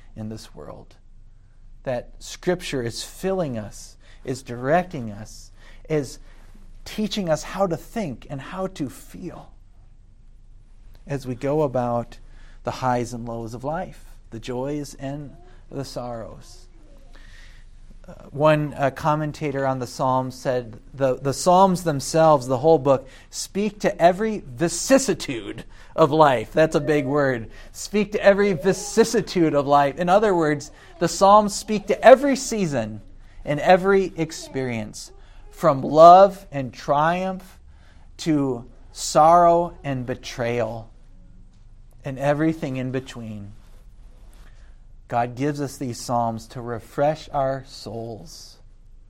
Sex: male